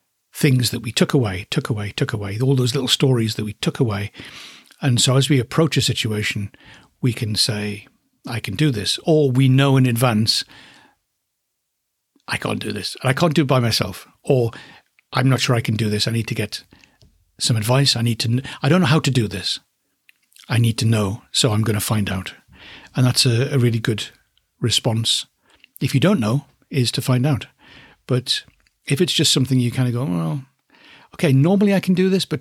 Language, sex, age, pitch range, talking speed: English, male, 60-79, 120-150 Hz, 210 wpm